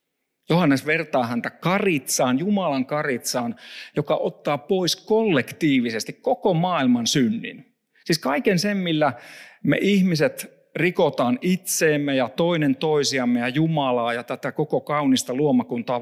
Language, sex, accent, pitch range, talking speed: Finnish, male, native, 145-220 Hz, 115 wpm